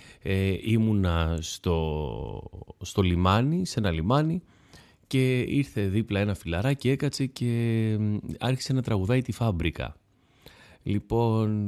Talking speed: 110 wpm